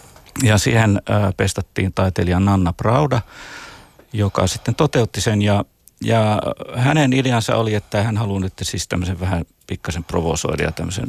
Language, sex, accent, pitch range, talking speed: Finnish, male, native, 95-120 Hz, 135 wpm